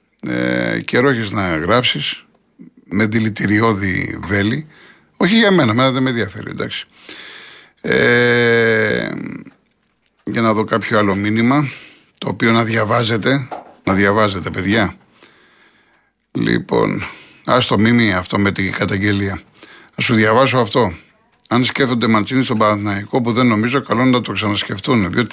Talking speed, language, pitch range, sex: 125 wpm, Greek, 110-135 Hz, male